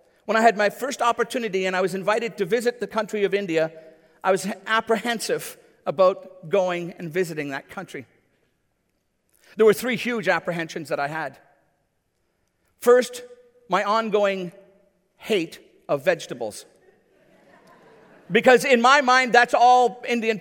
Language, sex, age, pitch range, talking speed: English, male, 50-69, 190-245 Hz, 135 wpm